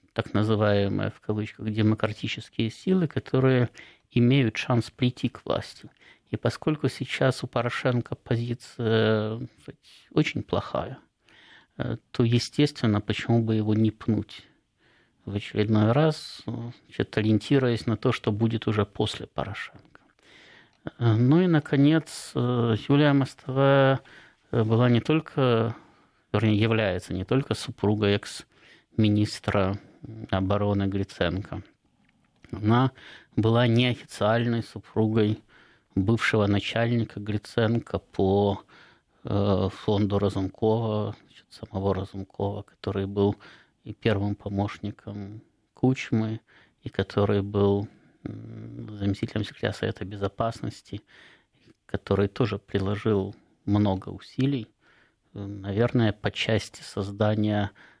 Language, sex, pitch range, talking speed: Russian, male, 100-120 Hz, 95 wpm